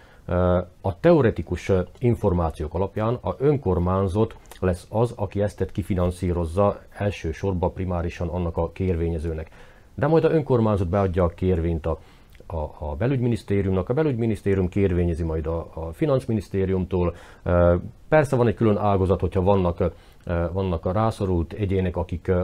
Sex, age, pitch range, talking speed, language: male, 40-59, 85-110 Hz, 120 wpm, Hungarian